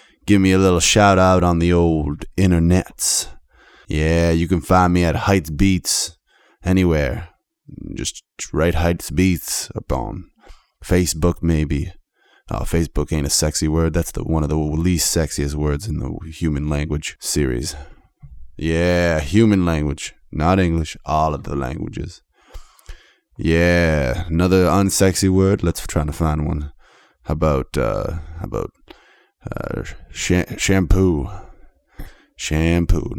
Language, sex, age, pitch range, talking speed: English, male, 20-39, 75-90 Hz, 125 wpm